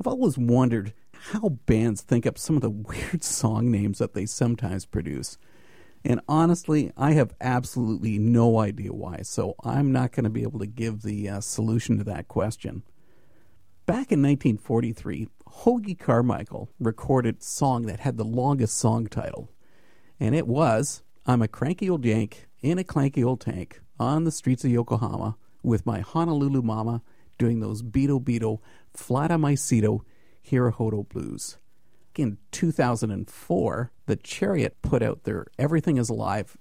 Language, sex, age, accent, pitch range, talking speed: English, male, 50-69, American, 110-135 Hz, 155 wpm